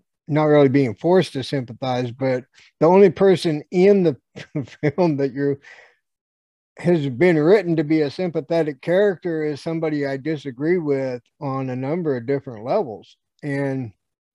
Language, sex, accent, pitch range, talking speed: English, male, American, 135-165 Hz, 145 wpm